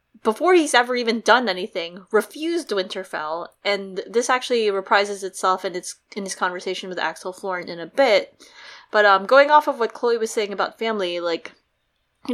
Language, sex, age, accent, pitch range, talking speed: English, female, 20-39, American, 190-230 Hz, 175 wpm